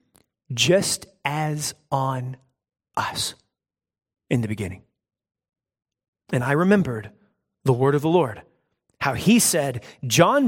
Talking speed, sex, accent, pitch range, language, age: 110 wpm, male, American, 130-185 Hz, English, 30-49